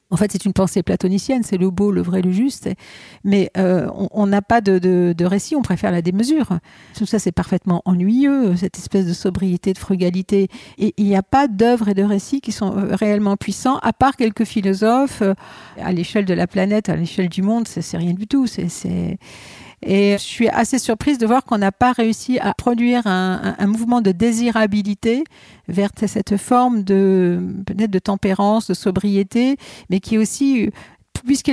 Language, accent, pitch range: French, French, 190-225 Hz